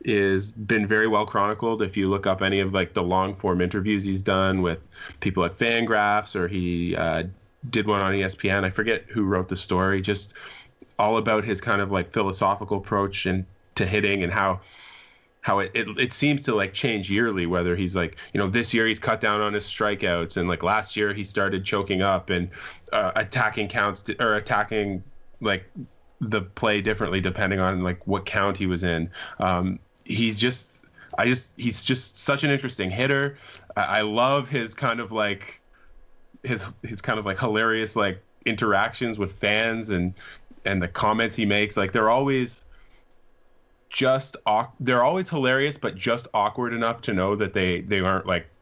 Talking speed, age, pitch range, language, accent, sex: 185 wpm, 20-39, 95-110 Hz, English, American, male